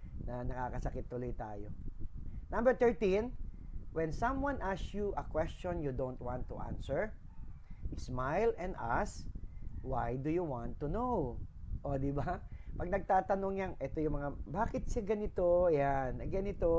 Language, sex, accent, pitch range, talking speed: English, male, Filipino, 120-170 Hz, 145 wpm